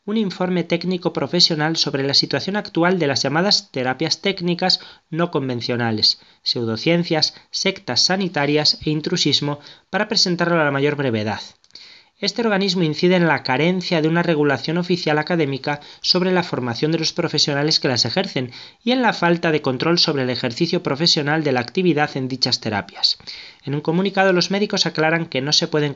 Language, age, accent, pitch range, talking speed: Spanish, 20-39, Spanish, 135-180 Hz, 165 wpm